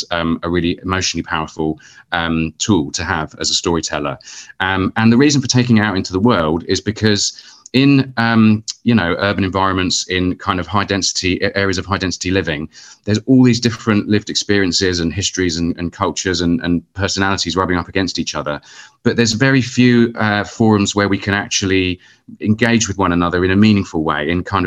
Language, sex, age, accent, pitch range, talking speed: English, male, 30-49, British, 85-105 Hz, 195 wpm